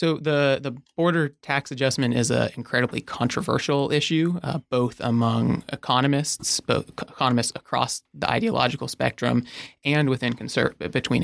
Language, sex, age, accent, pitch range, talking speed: English, male, 30-49, American, 115-135 Hz, 135 wpm